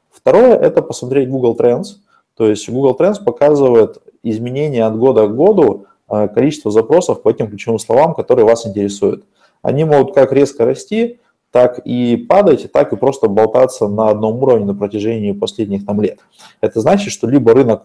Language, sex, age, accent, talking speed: Russian, male, 20-39, native, 170 wpm